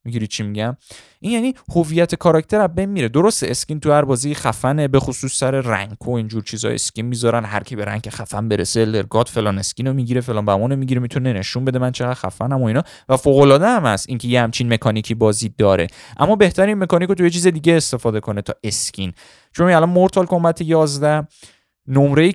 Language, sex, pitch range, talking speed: Persian, male, 110-150 Hz, 200 wpm